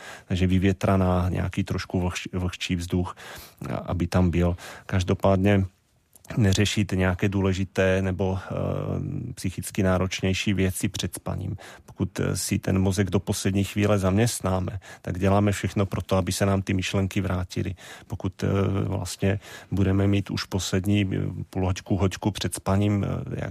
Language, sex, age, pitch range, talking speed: Czech, male, 40-59, 95-100 Hz, 125 wpm